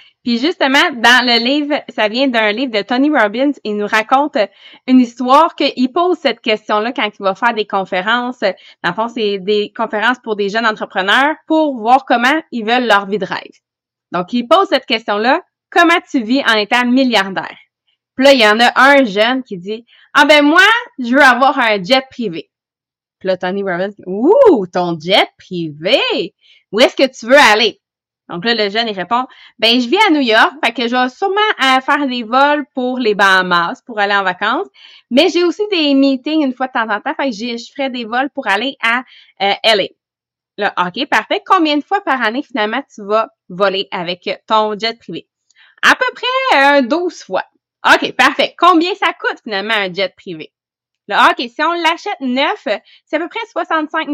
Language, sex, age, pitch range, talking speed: English, female, 20-39, 215-295 Hz, 210 wpm